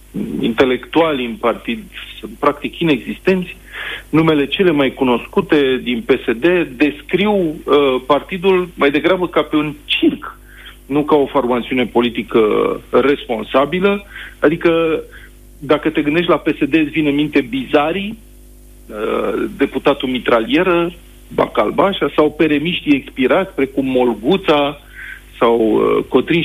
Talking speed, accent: 110 wpm, native